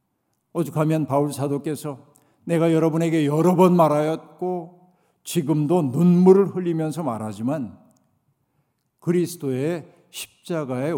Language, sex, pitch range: Korean, male, 140-170 Hz